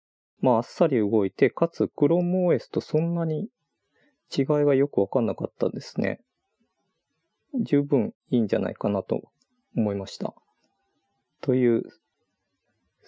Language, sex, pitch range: Japanese, male, 110-155 Hz